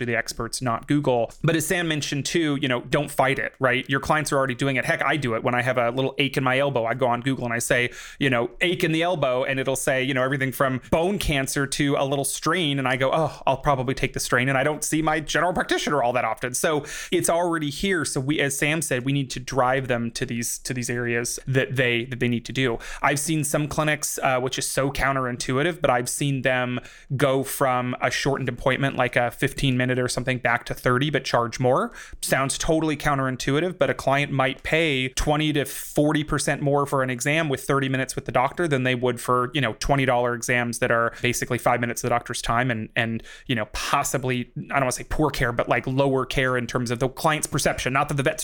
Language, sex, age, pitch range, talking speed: English, male, 30-49, 125-145 Hz, 250 wpm